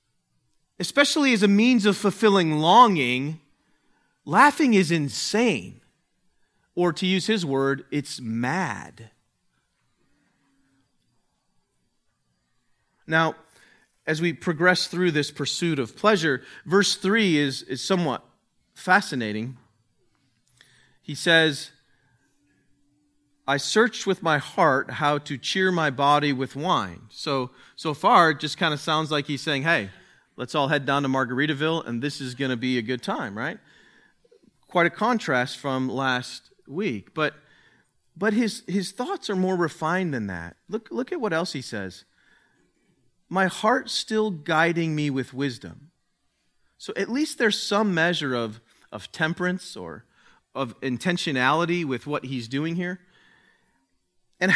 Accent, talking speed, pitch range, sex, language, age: American, 135 wpm, 135-190 Hz, male, English, 40-59